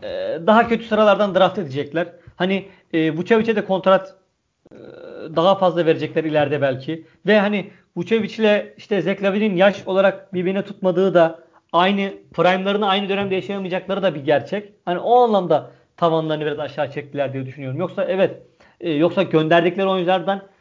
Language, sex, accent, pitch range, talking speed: Turkish, male, native, 155-195 Hz, 145 wpm